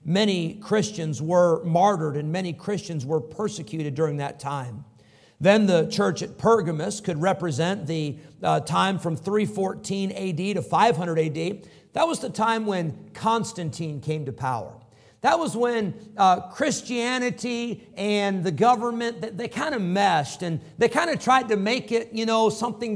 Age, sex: 50-69, male